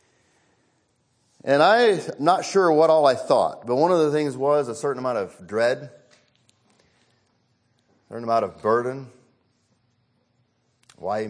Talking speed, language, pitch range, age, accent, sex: 135 wpm, English, 120-170 Hz, 50-69, American, male